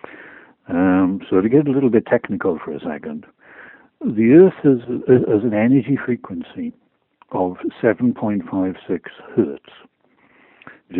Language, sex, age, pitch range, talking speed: English, male, 60-79, 95-115 Hz, 120 wpm